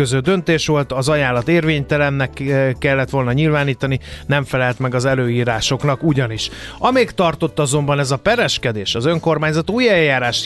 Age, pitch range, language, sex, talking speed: 30-49, 125-155 Hz, Hungarian, male, 145 wpm